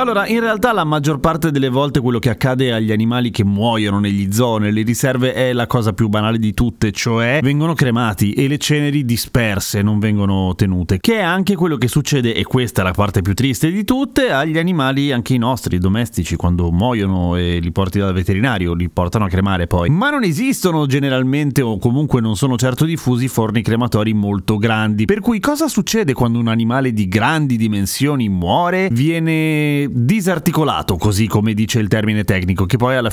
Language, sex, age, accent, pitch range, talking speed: Italian, male, 30-49, native, 110-150 Hz, 190 wpm